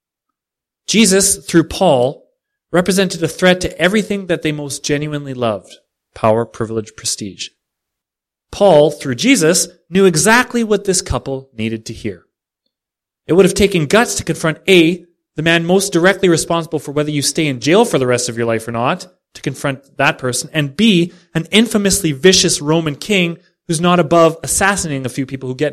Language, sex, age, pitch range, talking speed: English, male, 30-49, 130-180 Hz, 175 wpm